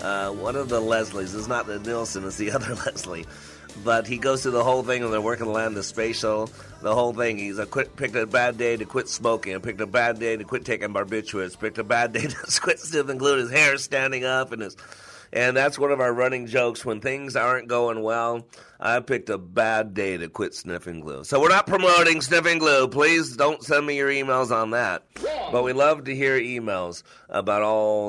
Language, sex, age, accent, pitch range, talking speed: English, male, 30-49, American, 100-125 Hz, 225 wpm